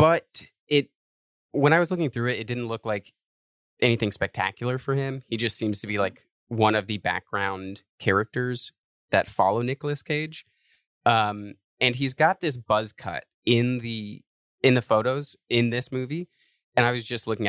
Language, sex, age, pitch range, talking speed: English, male, 20-39, 100-125 Hz, 175 wpm